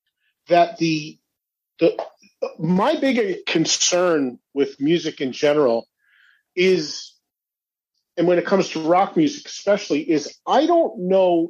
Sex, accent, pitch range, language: male, American, 155-235 Hz, English